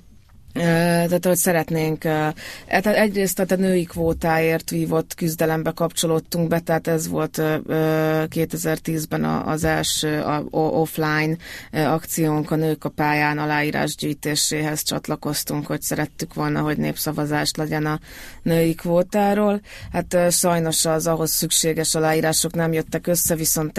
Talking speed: 115 wpm